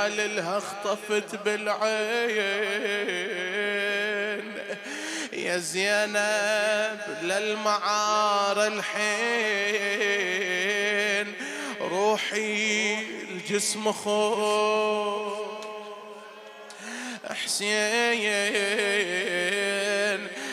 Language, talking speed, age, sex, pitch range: Arabic, 30 wpm, 20-39, male, 200-215 Hz